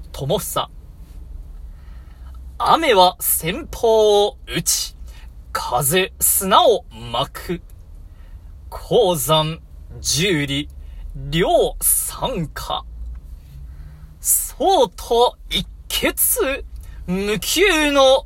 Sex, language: male, Japanese